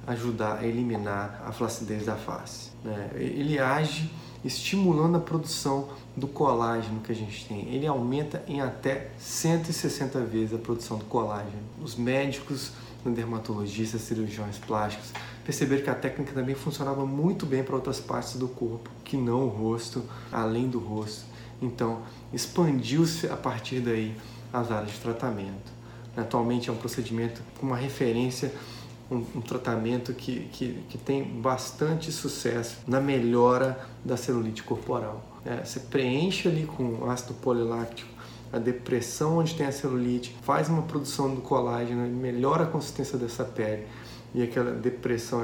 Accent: Brazilian